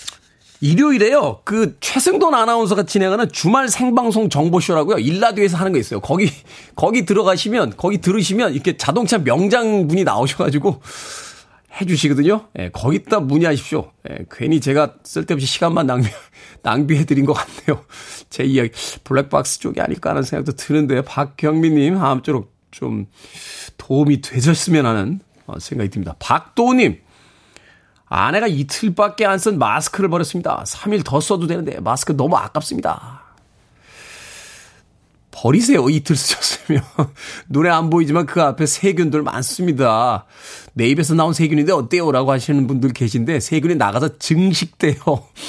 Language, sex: Korean, male